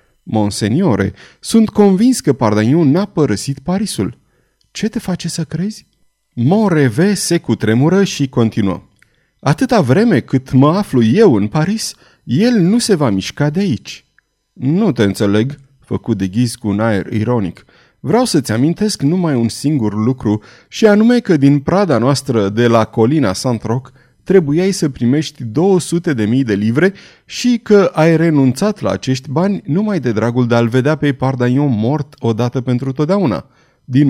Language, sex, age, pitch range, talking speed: Romanian, male, 30-49, 115-175 Hz, 155 wpm